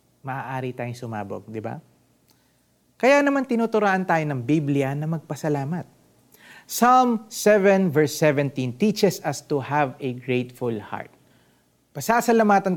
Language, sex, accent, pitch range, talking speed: Filipino, male, native, 130-200 Hz, 120 wpm